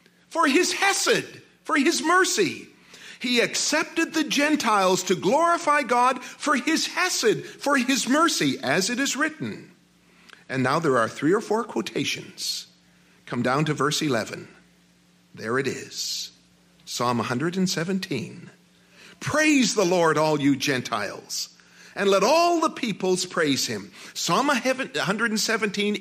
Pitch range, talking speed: 185-300 Hz, 130 wpm